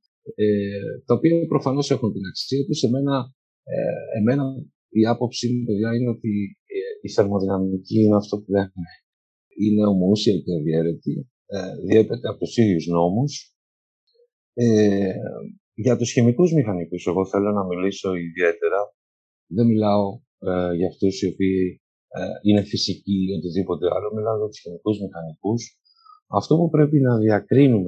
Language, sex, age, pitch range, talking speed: Greek, male, 50-69, 95-130 Hz, 140 wpm